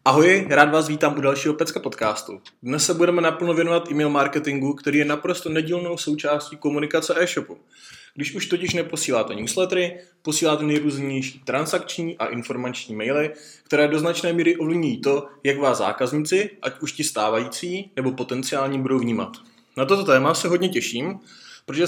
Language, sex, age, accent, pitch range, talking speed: Czech, male, 20-39, native, 130-165 Hz, 155 wpm